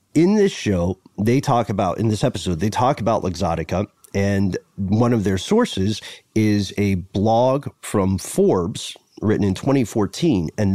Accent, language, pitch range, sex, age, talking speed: American, English, 100-125 Hz, male, 30-49, 145 wpm